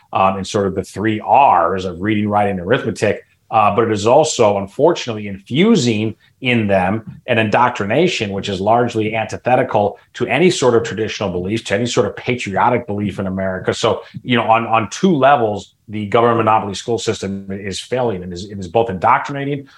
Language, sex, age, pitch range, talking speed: English, male, 30-49, 100-120 Hz, 185 wpm